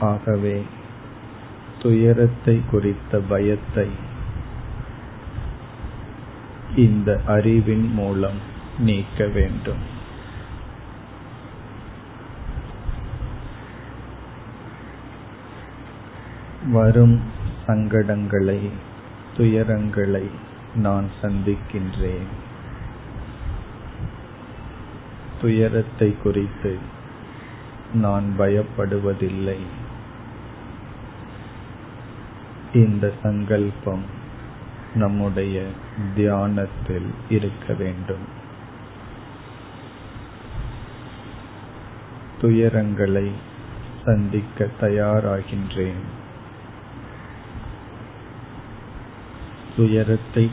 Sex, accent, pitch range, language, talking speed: male, native, 100-115 Hz, Tamil, 30 wpm